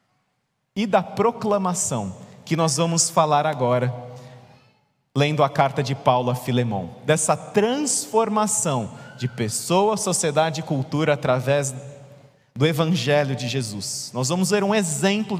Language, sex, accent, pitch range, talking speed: Portuguese, male, Brazilian, 120-180 Hz, 125 wpm